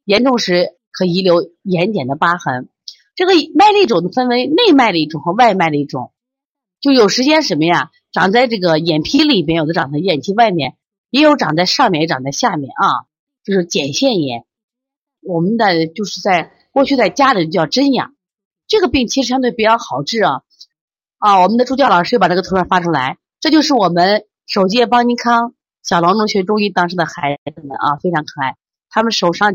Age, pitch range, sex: 30-49, 165-245 Hz, female